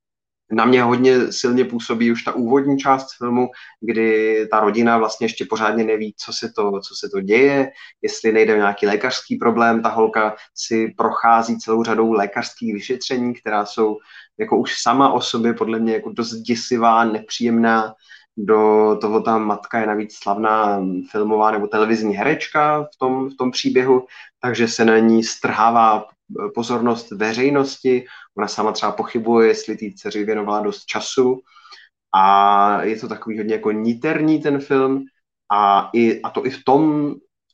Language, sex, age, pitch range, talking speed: Czech, male, 20-39, 110-125 Hz, 160 wpm